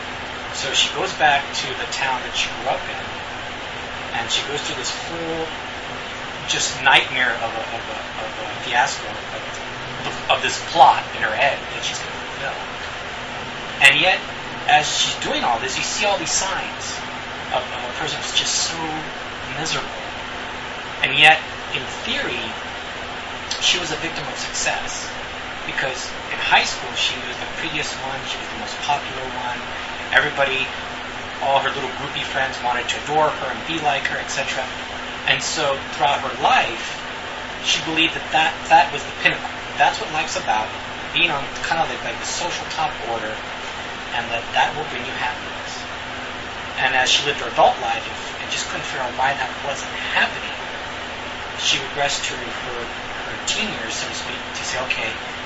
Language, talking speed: English, 175 wpm